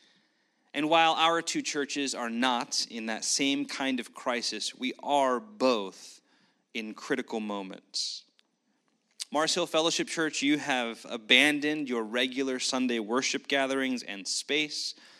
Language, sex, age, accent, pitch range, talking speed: English, male, 30-49, American, 120-160 Hz, 130 wpm